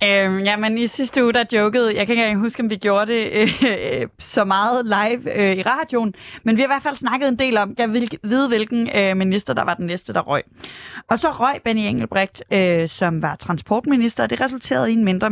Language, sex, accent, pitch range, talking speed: Danish, female, native, 190-240 Hz, 240 wpm